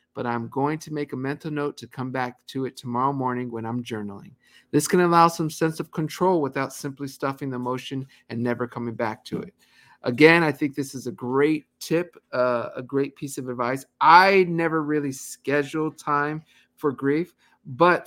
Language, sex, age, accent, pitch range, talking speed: English, male, 50-69, American, 120-150 Hz, 195 wpm